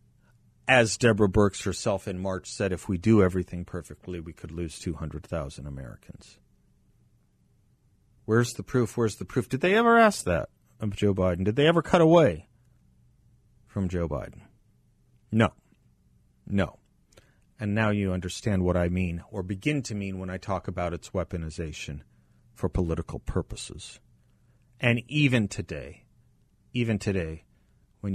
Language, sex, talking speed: English, male, 145 wpm